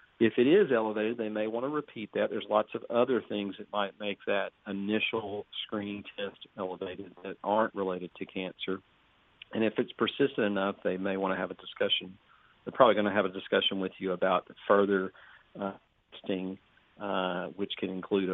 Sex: male